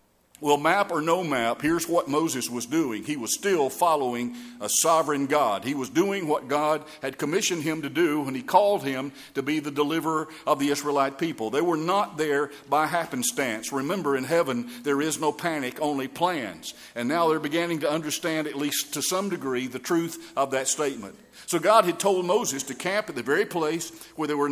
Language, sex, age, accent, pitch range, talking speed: English, male, 50-69, American, 140-175 Hz, 205 wpm